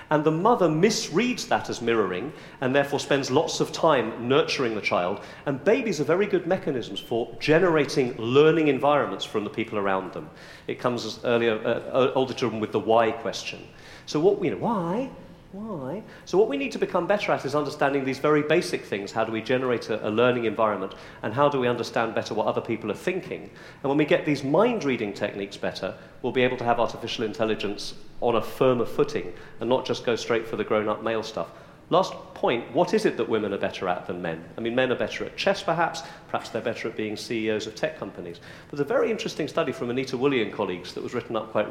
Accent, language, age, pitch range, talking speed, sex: British, English, 40-59, 115-180 Hz, 220 wpm, male